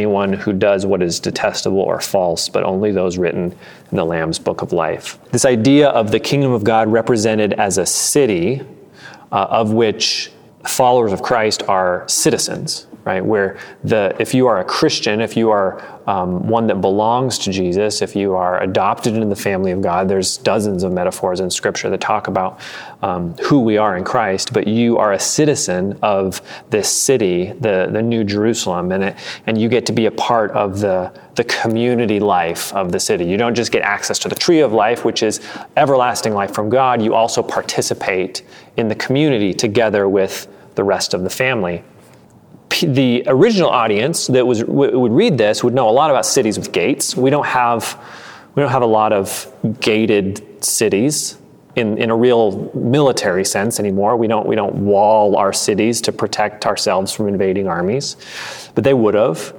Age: 30-49